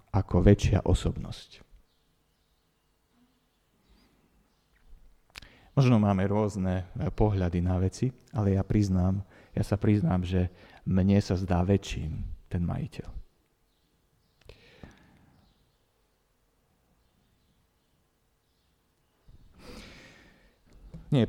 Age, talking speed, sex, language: 40-59, 65 wpm, male, Slovak